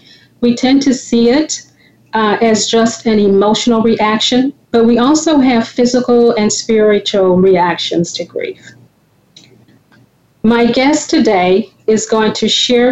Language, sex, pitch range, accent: English, female, 200-240 Hz, American